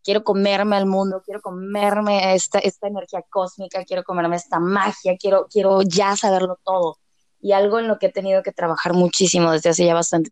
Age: 20-39